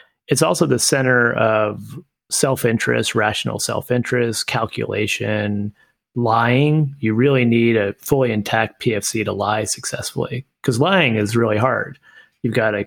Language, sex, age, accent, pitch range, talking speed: English, male, 30-49, American, 105-130 Hz, 130 wpm